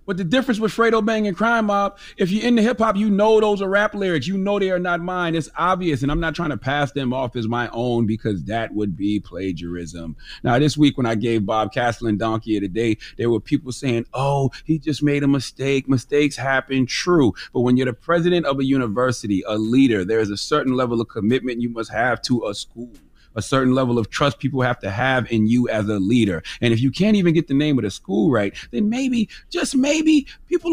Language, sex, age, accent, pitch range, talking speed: English, male, 30-49, American, 110-170 Hz, 240 wpm